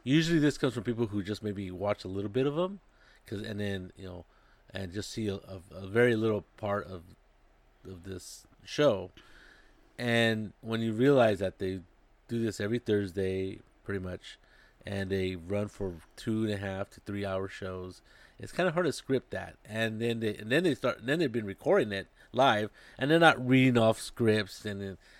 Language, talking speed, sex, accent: English, 200 wpm, male, American